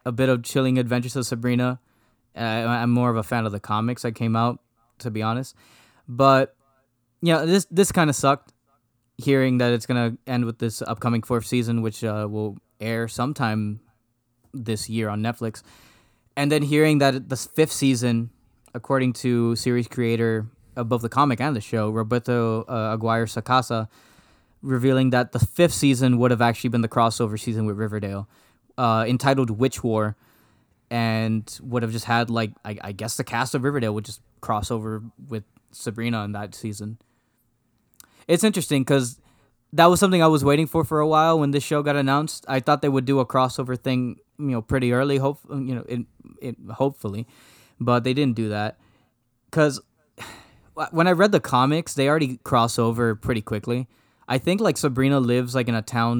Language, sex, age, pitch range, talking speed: English, male, 20-39, 115-135 Hz, 185 wpm